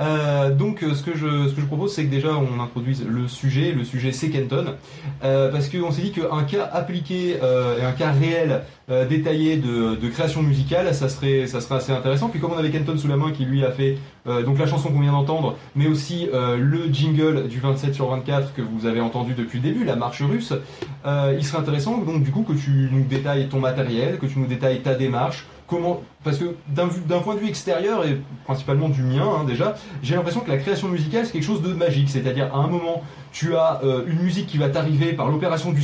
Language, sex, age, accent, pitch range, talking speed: French, male, 20-39, French, 130-160 Hz, 240 wpm